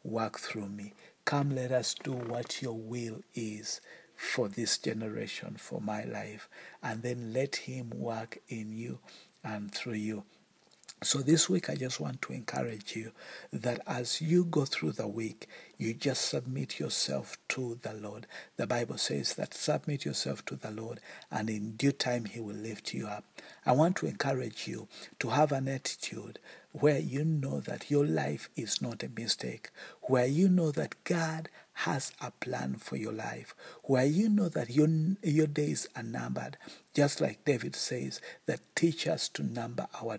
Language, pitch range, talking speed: English, 115-150 Hz, 175 wpm